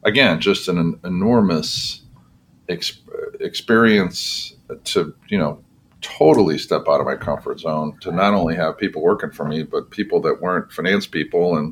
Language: English